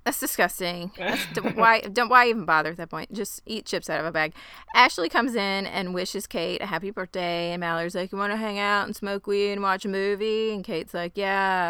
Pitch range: 170-210 Hz